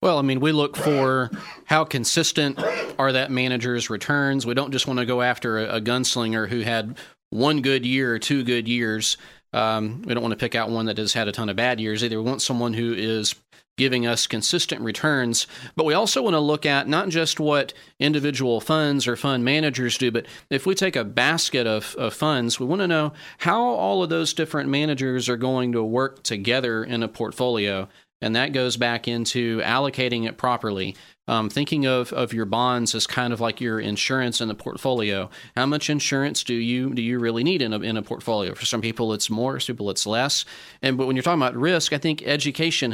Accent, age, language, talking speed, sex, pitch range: American, 30-49, English, 220 wpm, male, 115-145 Hz